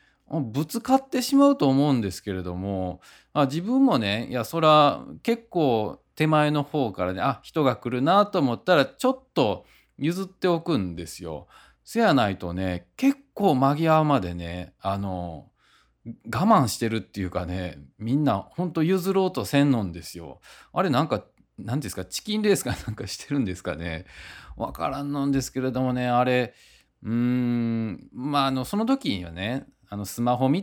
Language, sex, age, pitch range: Japanese, male, 20-39, 95-160 Hz